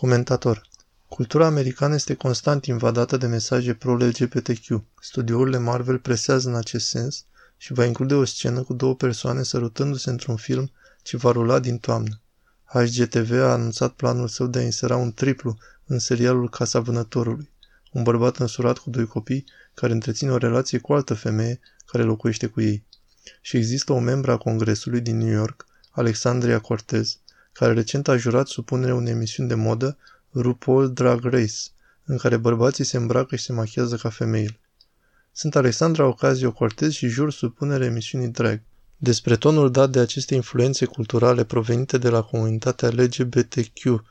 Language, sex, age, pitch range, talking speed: Romanian, male, 20-39, 115-130 Hz, 160 wpm